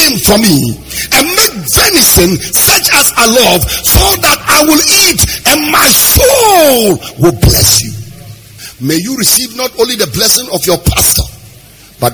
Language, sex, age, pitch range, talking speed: English, male, 50-69, 120-180 Hz, 155 wpm